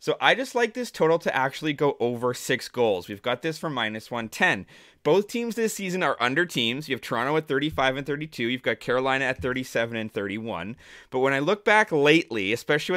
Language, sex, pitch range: English, male, 125-165 Hz